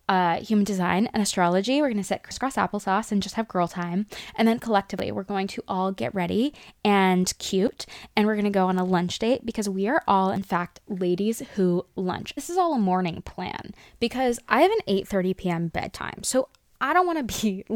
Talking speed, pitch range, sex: 220 wpm, 185-270 Hz, female